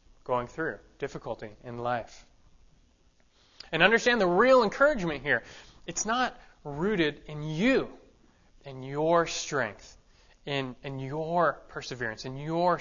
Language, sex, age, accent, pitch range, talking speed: English, male, 20-39, American, 120-165 Hz, 120 wpm